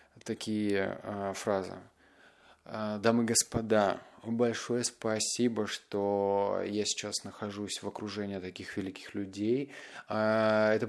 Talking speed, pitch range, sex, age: 95 wpm, 100-115 Hz, male, 20-39